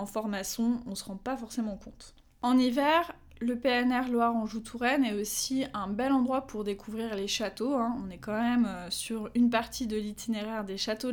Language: French